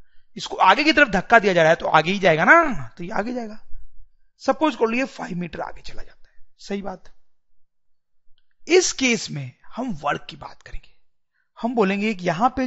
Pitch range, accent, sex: 175-255 Hz, Indian, male